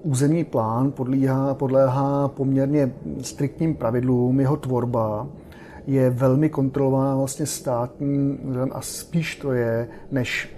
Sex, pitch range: male, 130-145 Hz